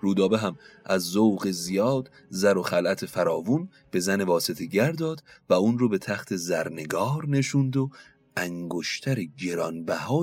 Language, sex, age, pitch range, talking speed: Persian, male, 30-49, 105-145 Hz, 135 wpm